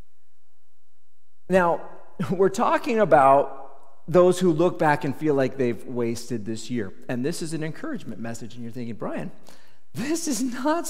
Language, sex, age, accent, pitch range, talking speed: English, male, 40-59, American, 155-225 Hz, 155 wpm